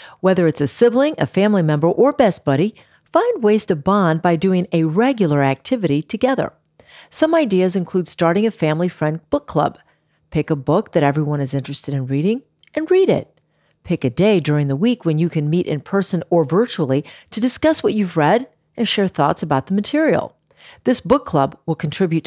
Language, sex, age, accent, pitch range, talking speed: English, female, 50-69, American, 150-215 Hz, 190 wpm